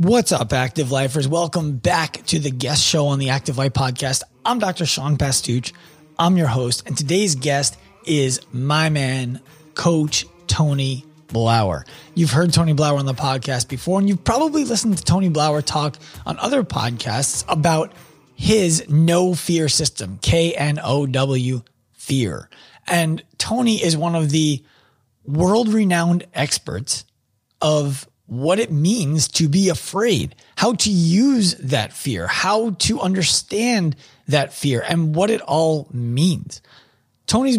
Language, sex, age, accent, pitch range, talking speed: English, male, 20-39, American, 135-175 Hz, 140 wpm